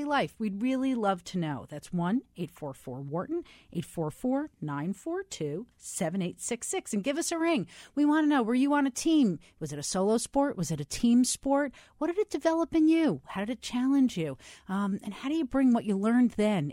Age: 40-59